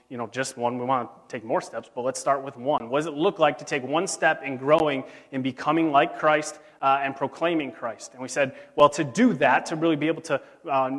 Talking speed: 255 wpm